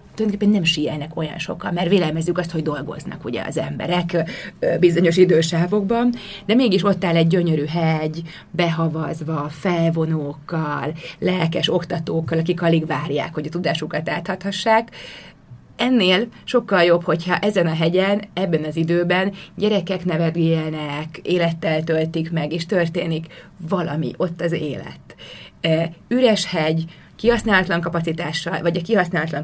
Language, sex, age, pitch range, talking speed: Hungarian, female, 30-49, 160-185 Hz, 125 wpm